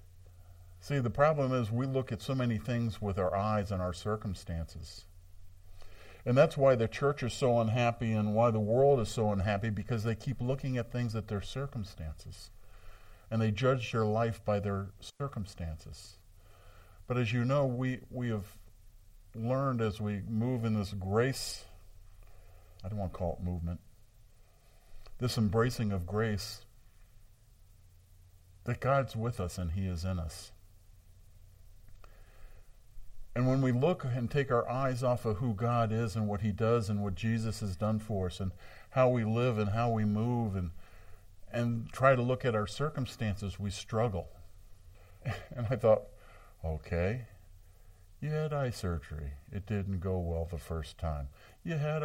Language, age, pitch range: English, 50-69, 95-120 Hz